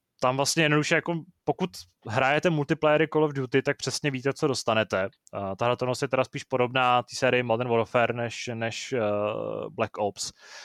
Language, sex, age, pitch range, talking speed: Czech, male, 20-39, 120-145 Hz, 170 wpm